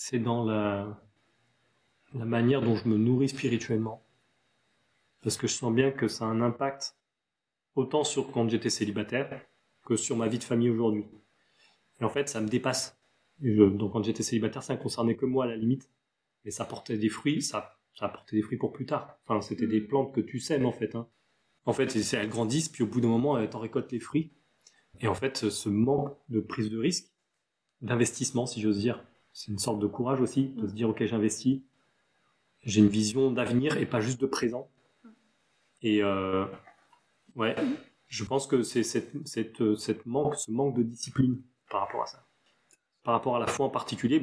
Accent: French